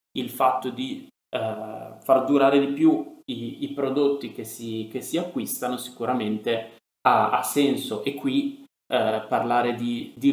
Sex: male